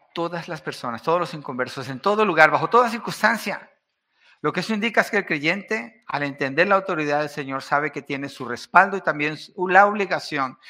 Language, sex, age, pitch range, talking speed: Spanish, male, 50-69, 145-205 Hz, 195 wpm